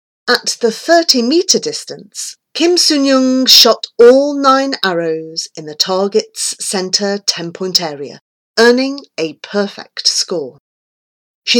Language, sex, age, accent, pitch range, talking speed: English, female, 40-59, British, 185-275 Hz, 120 wpm